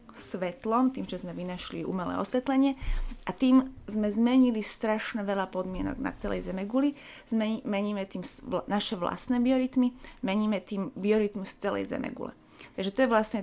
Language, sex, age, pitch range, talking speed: Slovak, female, 30-49, 190-230 Hz, 145 wpm